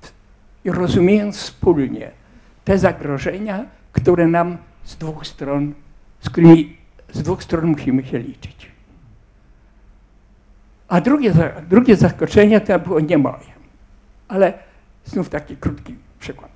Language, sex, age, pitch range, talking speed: Polish, male, 60-79, 145-195 Hz, 110 wpm